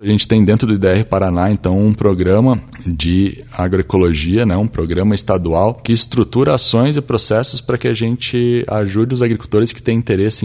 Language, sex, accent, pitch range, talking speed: Portuguese, male, Brazilian, 90-105 Hz, 180 wpm